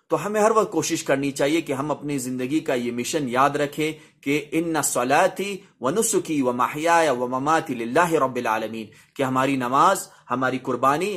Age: 30-49